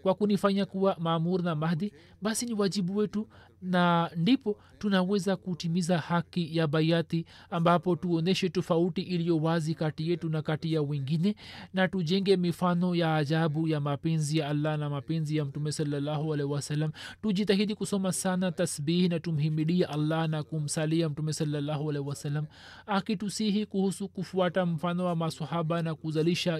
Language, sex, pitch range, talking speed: Swahili, male, 150-185 Hz, 150 wpm